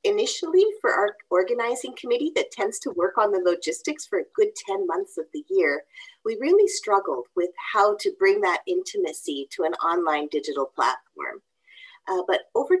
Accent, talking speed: American, 175 wpm